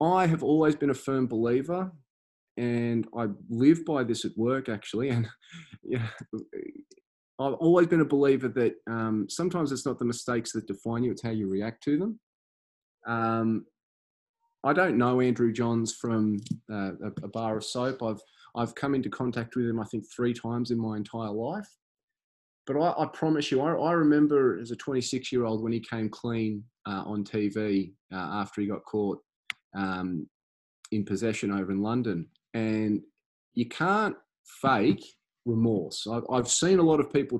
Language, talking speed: English, 170 wpm